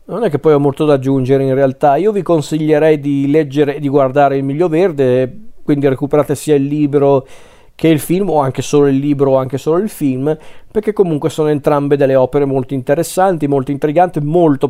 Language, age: Italian, 40-59